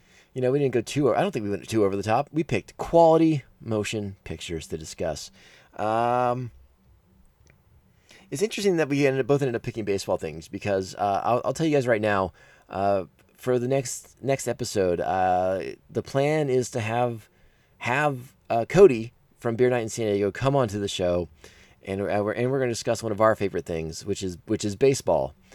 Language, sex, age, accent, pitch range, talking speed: English, male, 20-39, American, 95-125 Hz, 205 wpm